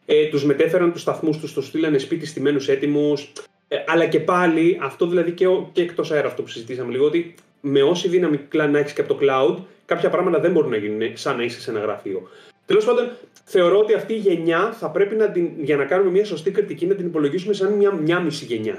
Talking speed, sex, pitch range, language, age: 230 wpm, male, 150-230 Hz, Greek, 30-49